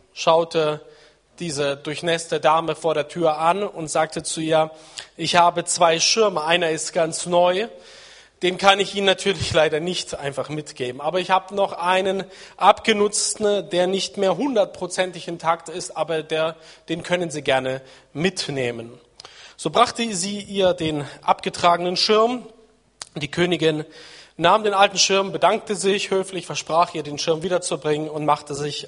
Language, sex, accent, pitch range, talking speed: German, male, German, 150-190 Hz, 150 wpm